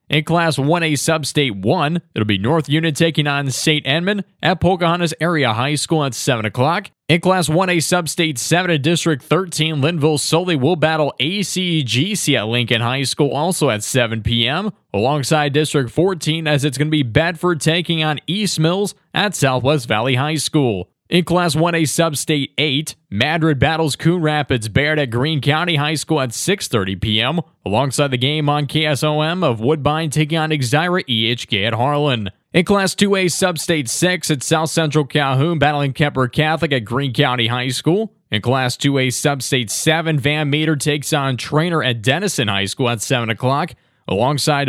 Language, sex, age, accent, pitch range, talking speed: English, male, 20-39, American, 135-165 Hz, 170 wpm